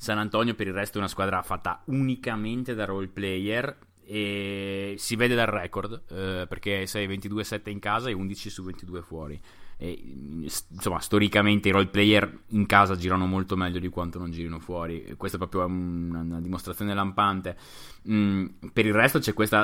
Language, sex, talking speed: Italian, male, 175 wpm